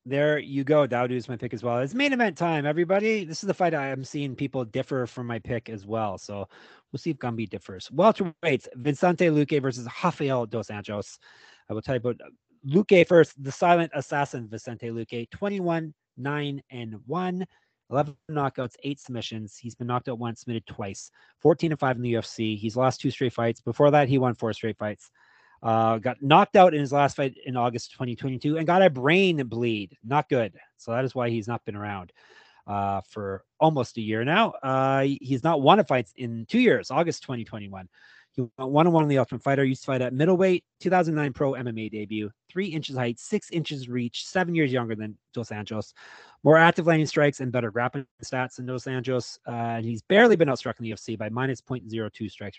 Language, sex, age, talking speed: English, male, 30-49, 210 wpm